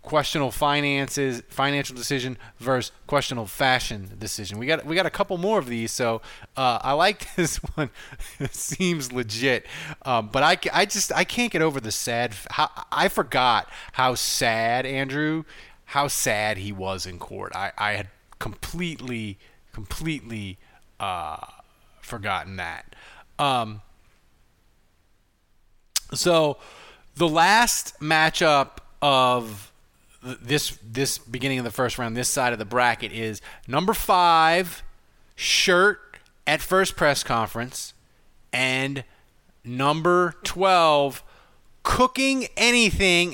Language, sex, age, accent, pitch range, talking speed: English, male, 30-49, American, 120-175 Hz, 125 wpm